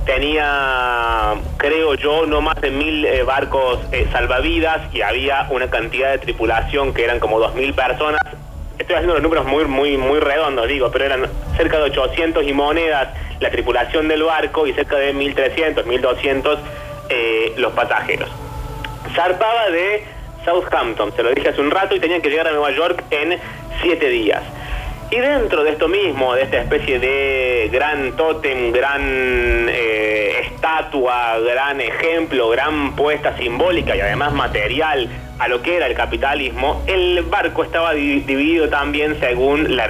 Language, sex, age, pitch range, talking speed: Spanish, male, 30-49, 125-160 Hz, 155 wpm